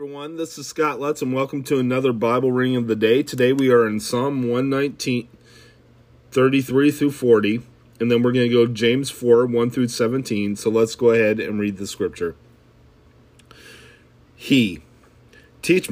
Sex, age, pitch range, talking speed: male, 40-59, 115-135 Hz, 150 wpm